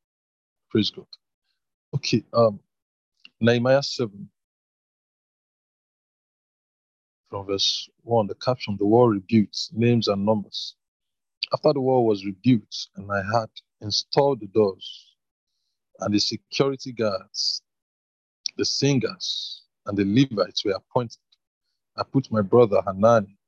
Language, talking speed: English, 110 wpm